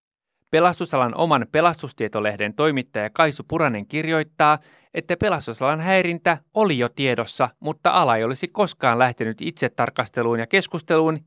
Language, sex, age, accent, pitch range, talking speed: Finnish, male, 30-49, native, 120-170 Hz, 120 wpm